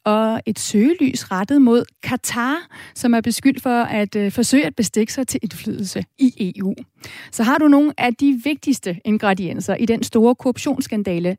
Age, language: 30-49, Danish